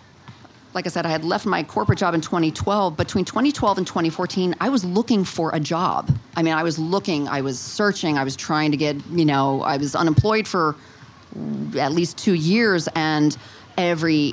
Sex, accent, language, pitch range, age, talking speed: female, American, English, 150-195 Hz, 40-59, 195 wpm